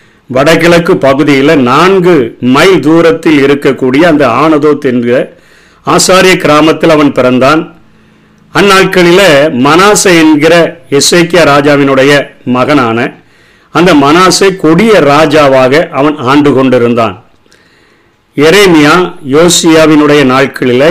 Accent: native